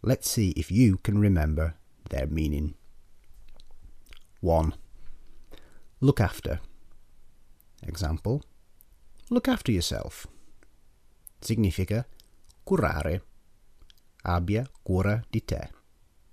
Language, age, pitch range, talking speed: Italian, 30-49, 85-105 Hz, 75 wpm